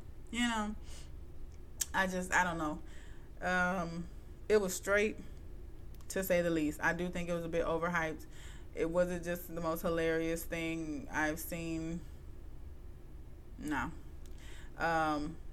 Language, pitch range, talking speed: English, 145-180 Hz, 130 wpm